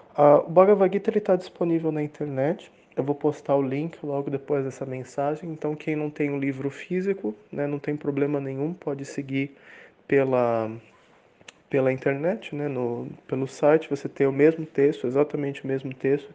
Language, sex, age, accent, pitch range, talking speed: English, male, 20-39, Brazilian, 135-160 Hz, 165 wpm